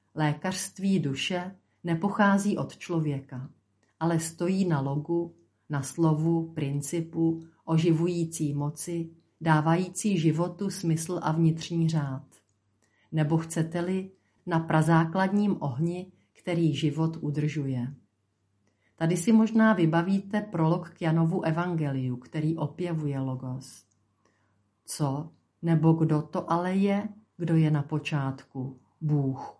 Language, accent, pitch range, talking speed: Czech, native, 145-180 Hz, 100 wpm